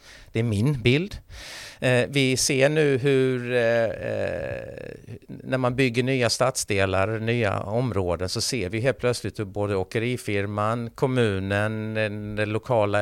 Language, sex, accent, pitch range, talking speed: Swedish, male, native, 90-115 Hz, 130 wpm